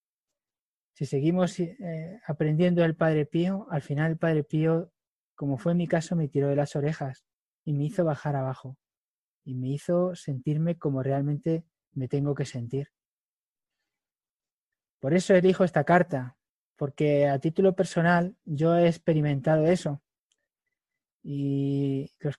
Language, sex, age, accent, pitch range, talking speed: Spanish, male, 20-39, Spanish, 145-175 Hz, 140 wpm